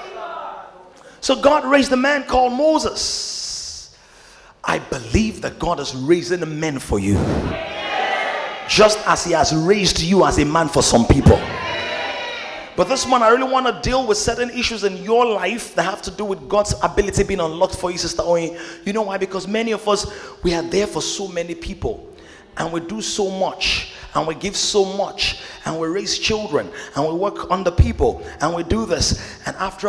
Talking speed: 190 wpm